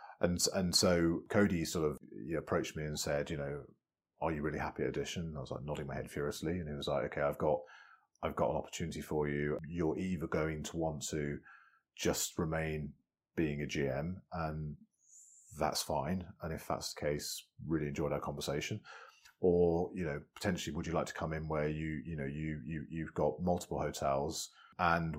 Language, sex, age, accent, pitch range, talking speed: English, male, 30-49, British, 75-95 Hz, 195 wpm